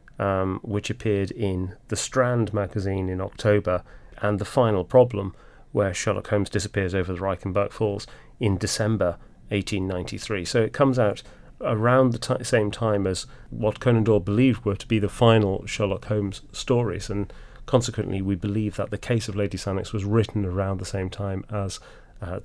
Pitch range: 100-115 Hz